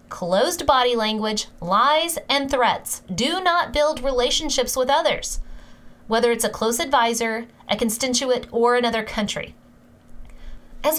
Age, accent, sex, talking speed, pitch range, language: 20-39, American, female, 125 wpm, 195-275 Hz, English